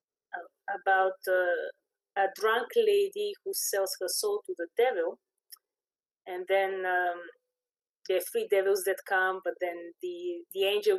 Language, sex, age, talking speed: English, female, 30-49, 140 wpm